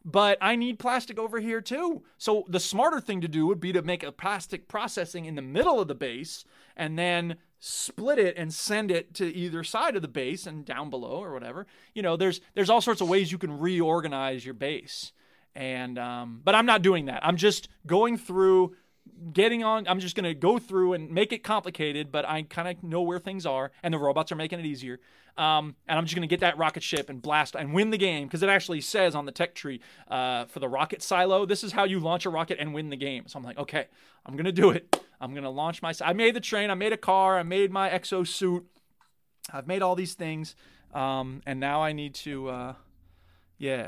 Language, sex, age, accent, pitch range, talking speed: English, male, 30-49, American, 150-195 Hz, 240 wpm